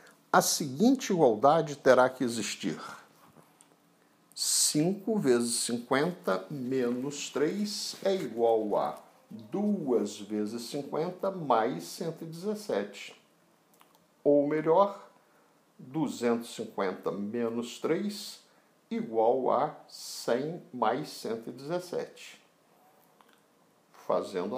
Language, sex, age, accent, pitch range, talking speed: Portuguese, male, 60-79, Brazilian, 130-210 Hz, 75 wpm